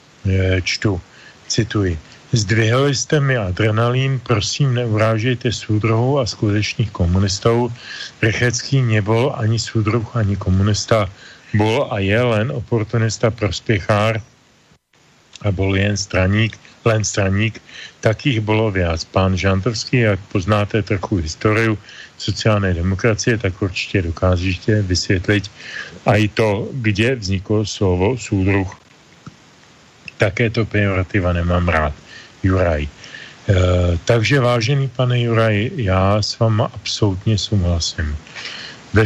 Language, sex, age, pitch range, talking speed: Slovak, male, 40-59, 95-120 Hz, 105 wpm